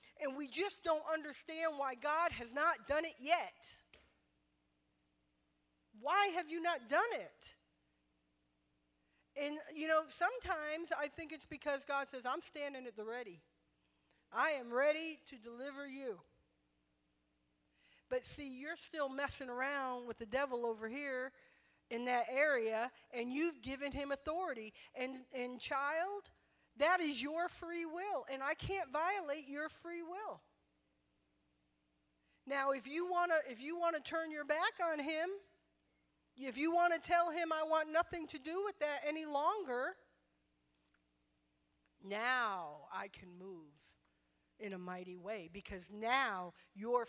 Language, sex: English, female